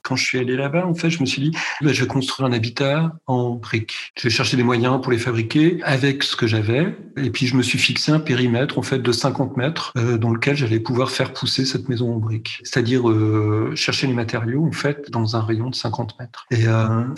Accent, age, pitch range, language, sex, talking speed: French, 40-59, 115-140 Hz, French, male, 250 wpm